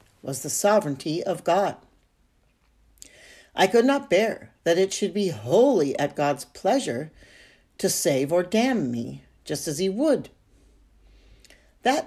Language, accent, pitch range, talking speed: English, American, 140-190 Hz, 135 wpm